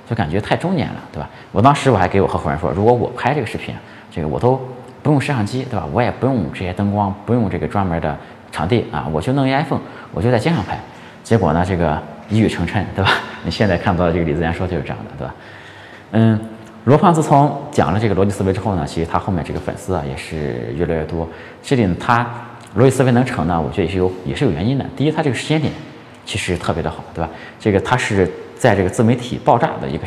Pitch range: 80-120 Hz